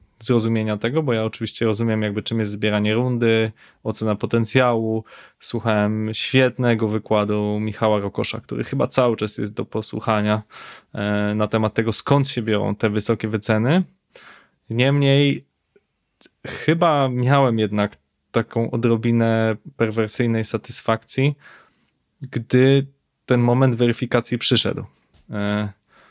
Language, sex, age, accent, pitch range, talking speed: Polish, male, 20-39, native, 105-120 Hz, 115 wpm